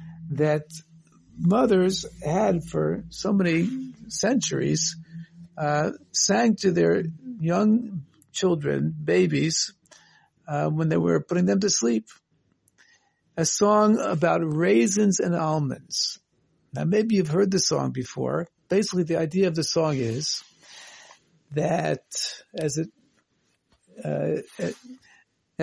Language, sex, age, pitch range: English, male, 60-79, 155-200 Hz